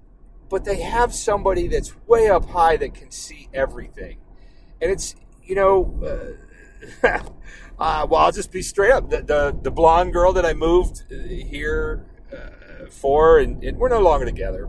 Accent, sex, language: American, male, English